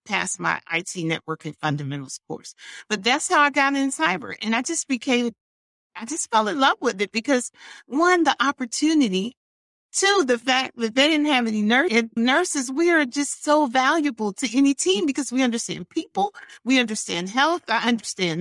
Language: English